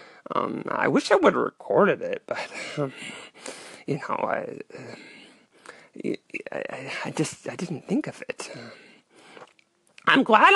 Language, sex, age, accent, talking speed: English, male, 20-39, American, 135 wpm